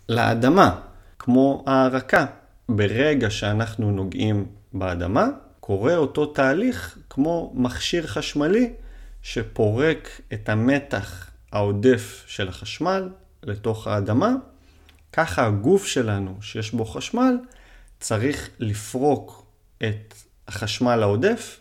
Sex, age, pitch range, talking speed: male, 30-49, 100-130 Hz, 90 wpm